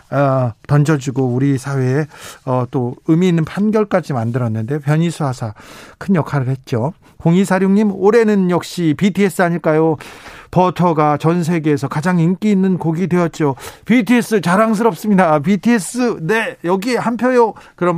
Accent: native